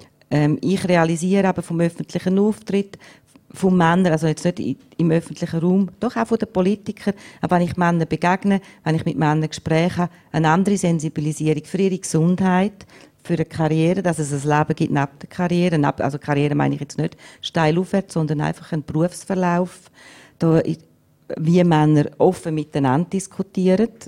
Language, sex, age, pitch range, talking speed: German, female, 40-59, 150-180 Hz, 160 wpm